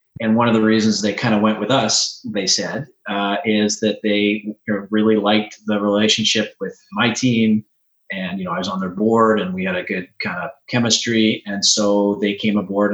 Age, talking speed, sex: 30-49, 210 wpm, male